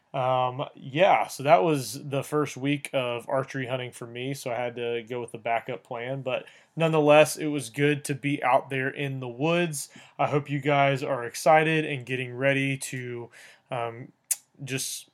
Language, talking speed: English, 180 wpm